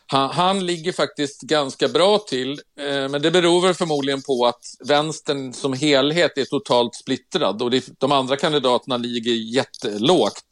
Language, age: Swedish, 50-69